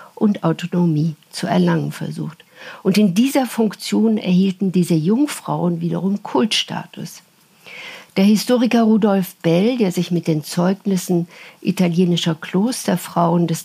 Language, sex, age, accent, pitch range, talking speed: German, female, 60-79, German, 170-205 Hz, 115 wpm